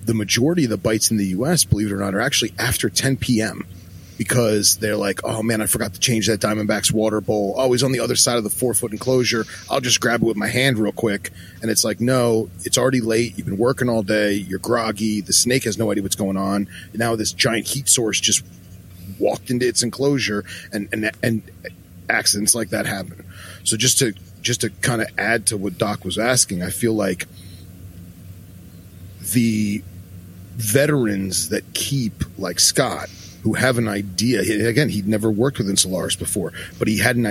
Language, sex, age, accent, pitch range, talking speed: English, male, 30-49, American, 95-120 Hz, 205 wpm